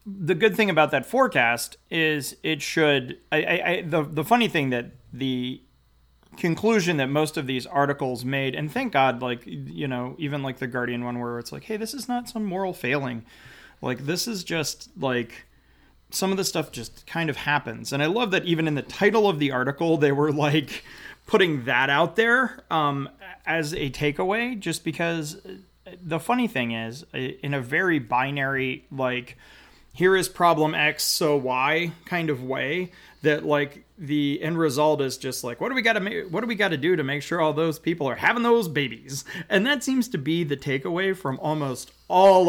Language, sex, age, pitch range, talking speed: English, male, 30-49, 130-180 Hz, 200 wpm